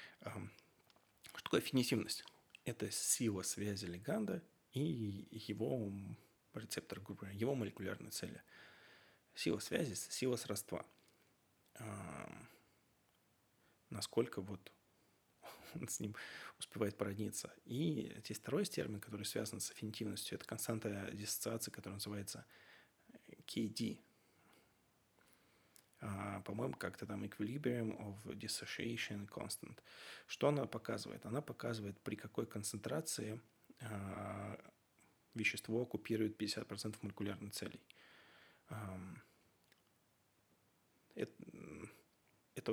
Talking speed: 85 wpm